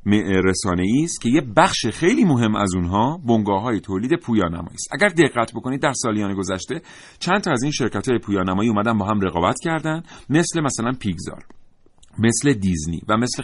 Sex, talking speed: male, 180 wpm